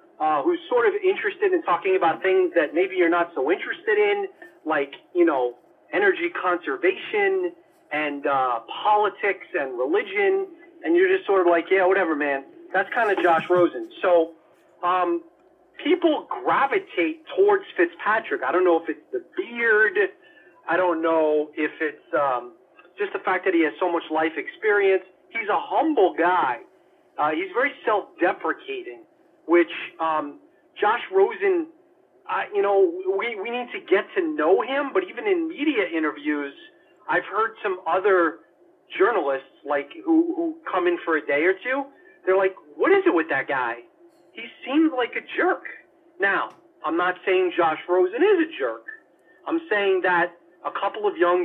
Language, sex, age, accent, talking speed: English, male, 40-59, American, 165 wpm